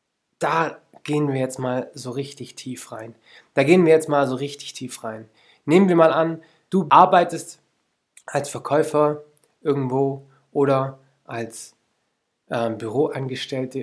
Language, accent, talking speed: German, German, 135 wpm